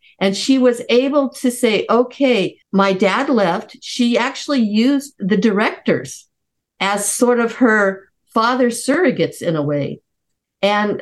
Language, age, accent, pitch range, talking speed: English, 50-69, American, 195-255 Hz, 135 wpm